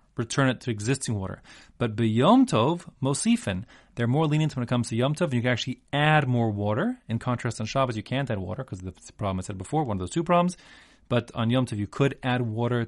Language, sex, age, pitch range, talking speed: English, male, 30-49, 105-145 Hz, 245 wpm